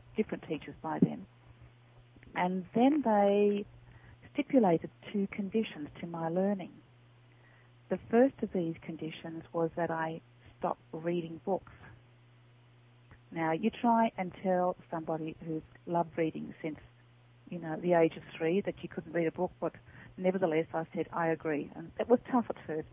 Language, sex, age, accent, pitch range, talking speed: English, female, 40-59, Australian, 130-180 Hz, 150 wpm